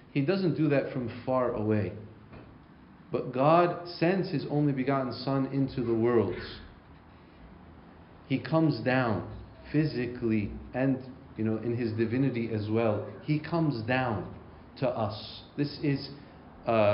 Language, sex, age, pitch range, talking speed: English, male, 40-59, 115-145 Hz, 130 wpm